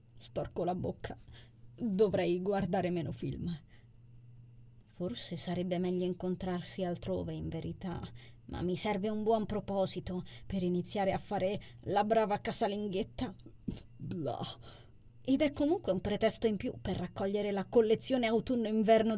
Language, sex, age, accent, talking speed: Italian, female, 20-39, native, 125 wpm